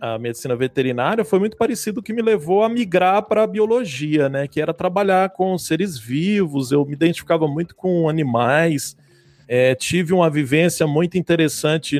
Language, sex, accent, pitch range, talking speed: Portuguese, male, Brazilian, 145-190 Hz, 170 wpm